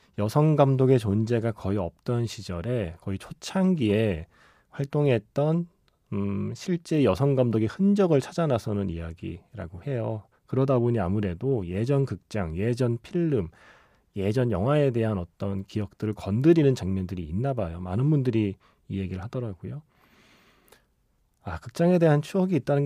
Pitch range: 100-140 Hz